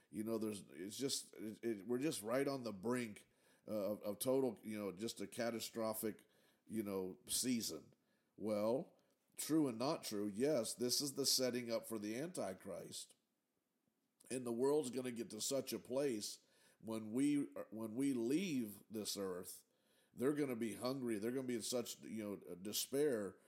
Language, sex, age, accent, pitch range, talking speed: English, male, 50-69, American, 105-125 Hz, 175 wpm